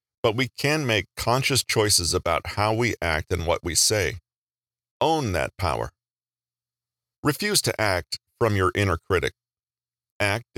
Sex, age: male, 40-59